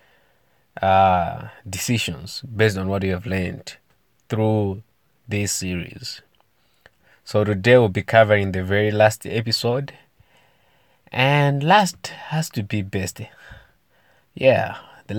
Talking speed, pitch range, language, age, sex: 110 wpm, 95-120 Hz, English, 20-39, male